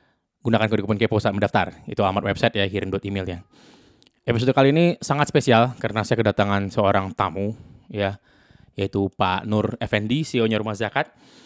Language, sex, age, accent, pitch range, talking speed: Indonesian, male, 20-39, native, 100-120 Hz, 160 wpm